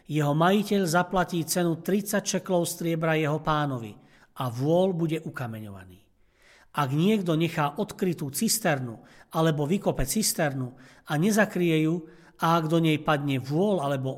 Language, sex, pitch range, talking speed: Slovak, male, 145-185 Hz, 130 wpm